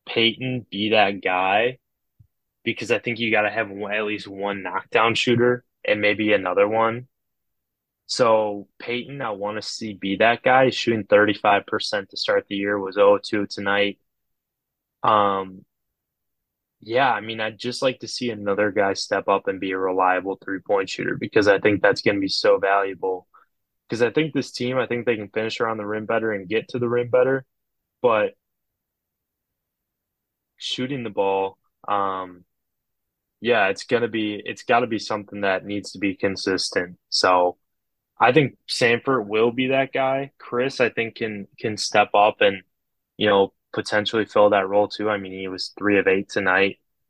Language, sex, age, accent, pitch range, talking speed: English, male, 20-39, American, 100-120 Hz, 170 wpm